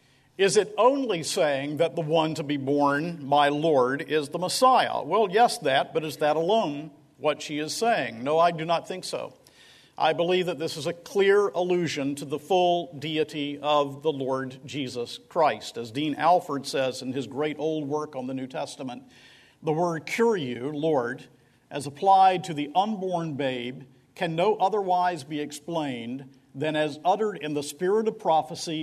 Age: 50-69